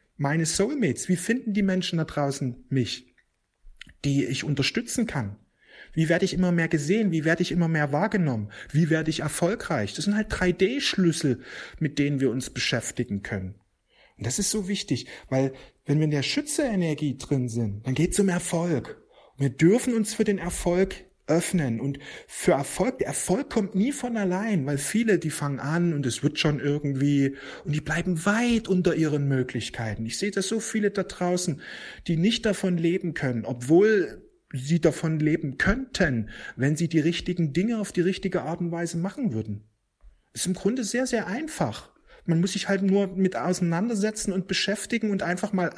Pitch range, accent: 140-195 Hz, German